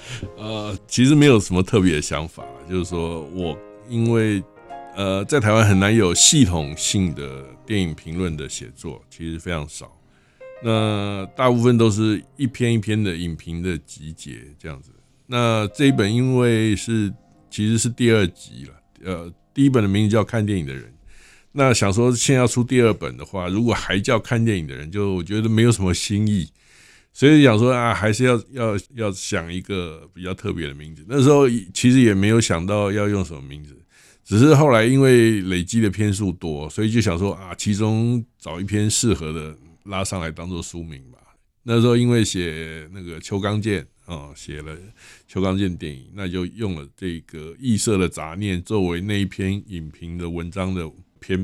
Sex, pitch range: male, 85-115 Hz